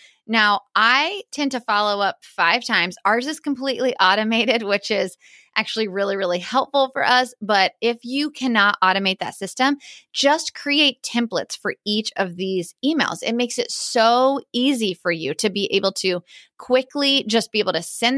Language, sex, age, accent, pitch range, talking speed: English, female, 20-39, American, 200-260 Hz, 170 wpm